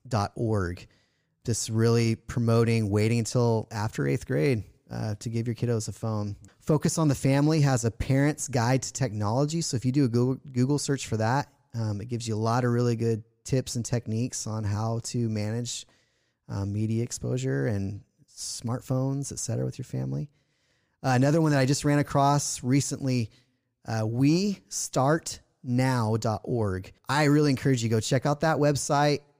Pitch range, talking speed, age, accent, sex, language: 110-130 Hz, 175 wpm, 30-49, American, male, English